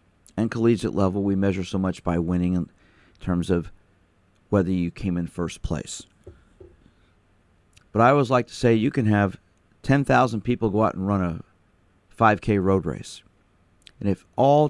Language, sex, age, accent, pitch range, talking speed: English, male, 40-59, American, 90-110 Hz, 165 wpm